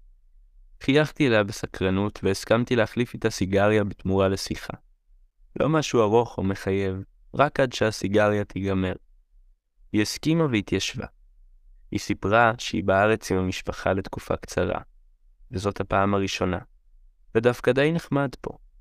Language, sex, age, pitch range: Hebrew, male, 20-39, 95-110 Hz